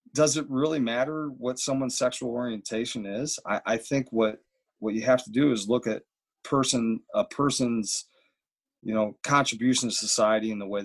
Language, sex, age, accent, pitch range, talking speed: English, male, 40-59, American, 105-130 Hz, 175 wpm